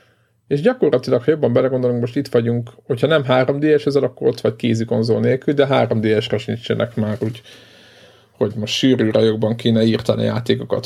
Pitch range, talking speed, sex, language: 110-130 Hz, 170 wpm, male, Hungarian